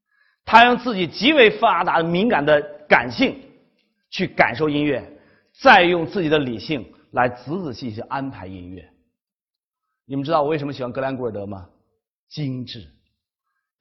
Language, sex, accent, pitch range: Chinese, male, native, 115-175 Hz